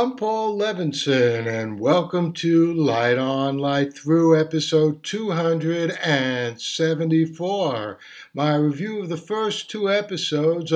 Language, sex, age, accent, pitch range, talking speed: English, male, 60-79, American, 135-165 Hz, 105 wpm